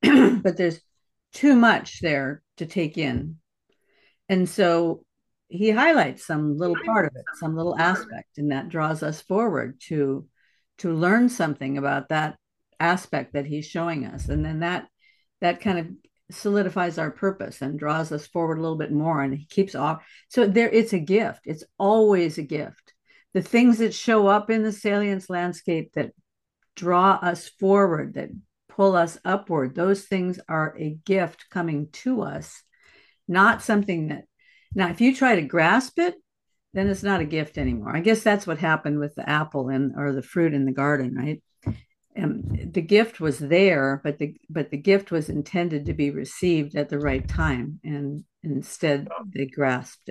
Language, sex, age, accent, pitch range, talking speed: English, female, 50-69, American, 145-195 Hz, 175 wpm